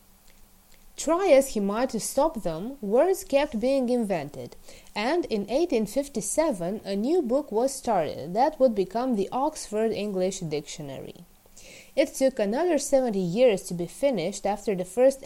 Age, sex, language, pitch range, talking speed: 20-39, female, Romanian, 190-270 Hz, 145 wpm